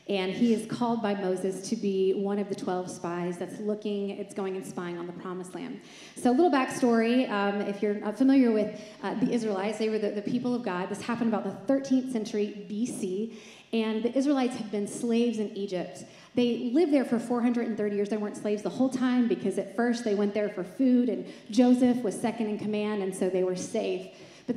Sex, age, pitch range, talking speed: female, 30-49, 190-225 Hz, 215 wpm